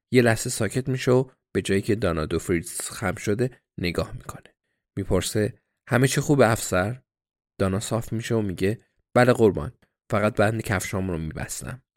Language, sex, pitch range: Persian, male, 95-120 Hz